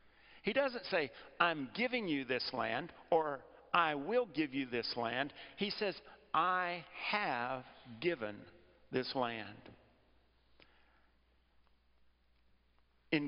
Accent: American